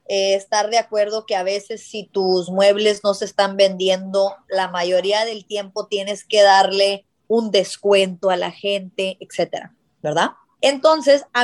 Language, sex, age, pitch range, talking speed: Spanish, female, 20-39, 205-270 Hz, 155 wpm